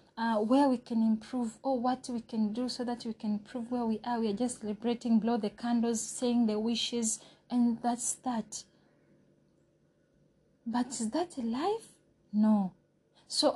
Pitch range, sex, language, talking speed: 220-270 Hz, female, English, 170 wpm